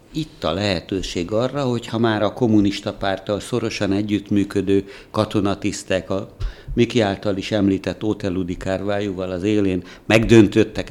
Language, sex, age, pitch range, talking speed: Hungarian, male, 60-79, 95-115 Hz, 120 wpm